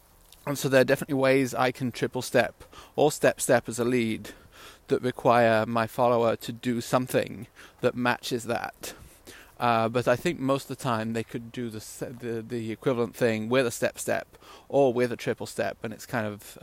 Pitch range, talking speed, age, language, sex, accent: 110-130 Hz, 190 wpm, 30-49, English, male, British